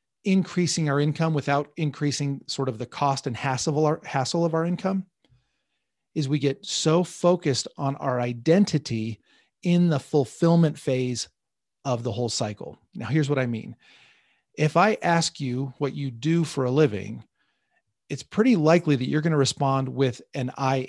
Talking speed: 160 wpm